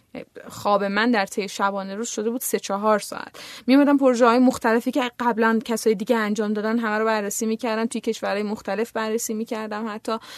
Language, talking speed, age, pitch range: Persian, 175 wpm, 10-29, 215-255 Hz